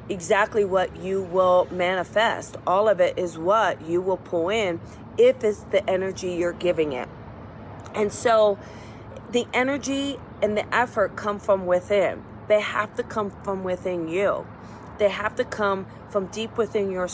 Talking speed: 160 wpm